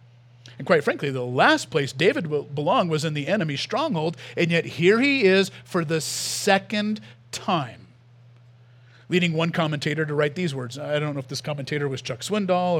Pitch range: 145-205 Hz